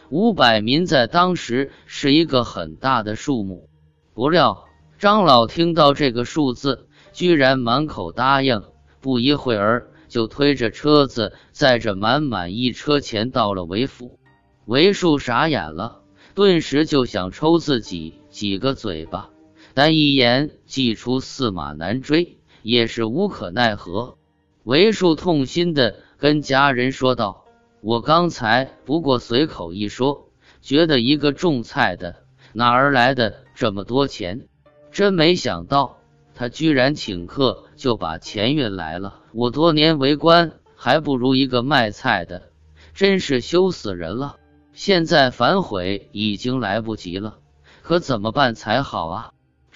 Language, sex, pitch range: Chinese, male, 105-150 Hz